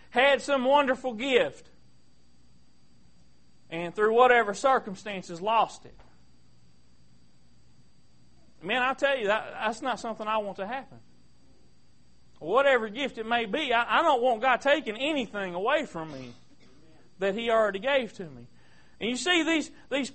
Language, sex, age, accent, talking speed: English, male, 40-59, American, 145 wpm